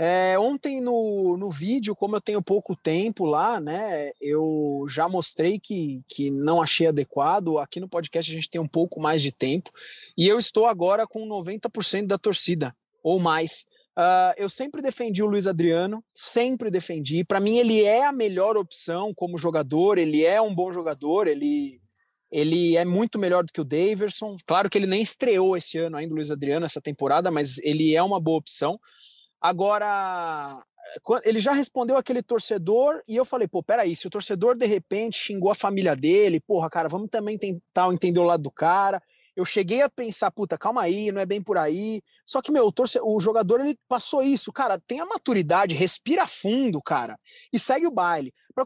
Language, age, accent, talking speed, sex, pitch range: Portuguese, 20-39, Brazilian, 190 wpm, male, 170-245 Hz